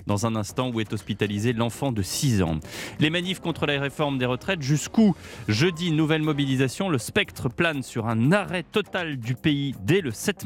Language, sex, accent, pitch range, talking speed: French, male, French, 110-155 Hz, 190 wpm